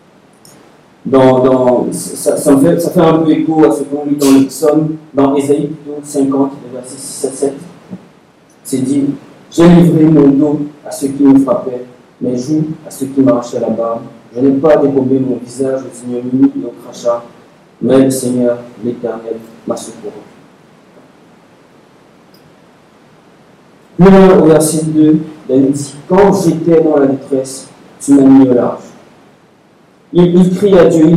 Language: French